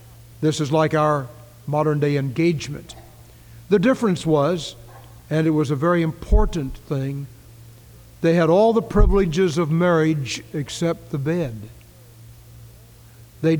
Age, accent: 60-79, American